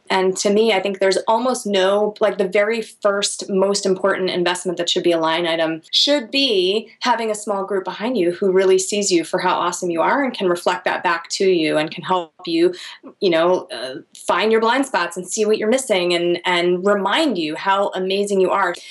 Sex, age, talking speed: female, 20-39, 220 wpm